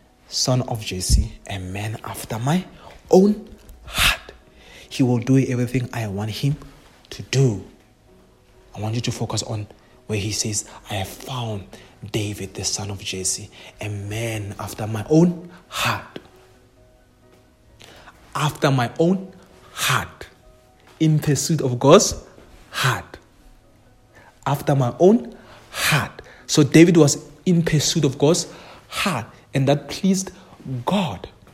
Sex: male